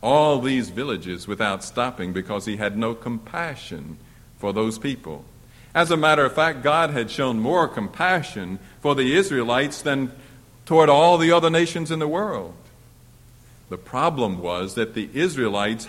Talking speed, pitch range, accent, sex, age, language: 155 wpm, 115-160 Hz, American, male, 60-79, English